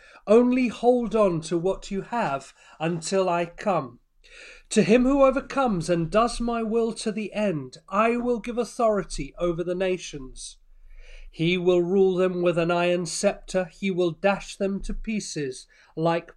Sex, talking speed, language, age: male, 160 wpm, English, 30-49